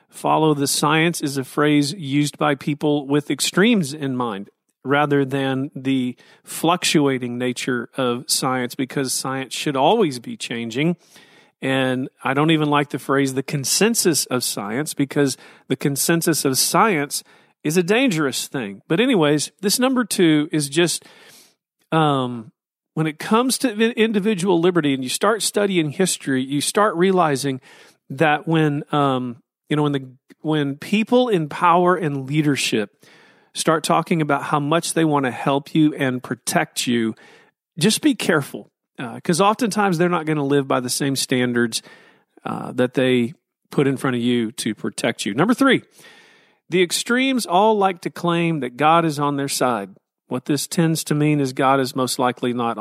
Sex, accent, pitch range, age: male, American, 135-180 Hz, 40-59